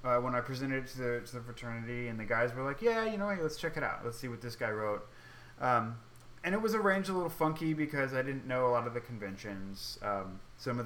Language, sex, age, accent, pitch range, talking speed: English, male, 30-49, American, 115-140 Hz, 265 wpm